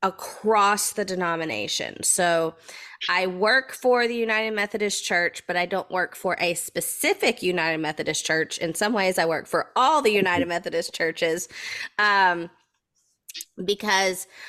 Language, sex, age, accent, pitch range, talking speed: English, female, 20-39, American, 170-200 Hz, 140 wpm